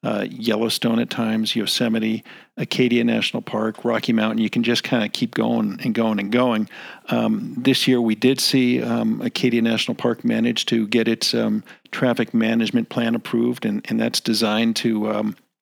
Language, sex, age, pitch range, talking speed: English, male, 50-69, 110-130 Hz, 175 wpm